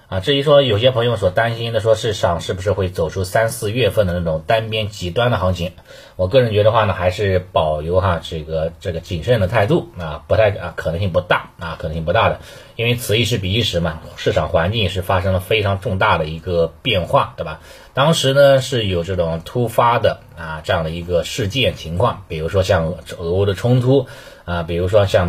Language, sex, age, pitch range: Chinese, male, 20-39, 85-115 Hz